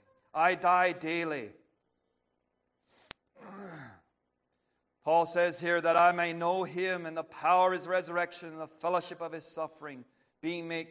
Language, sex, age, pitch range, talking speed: English, male, 50-69, 120-165 Hz, 140 wpm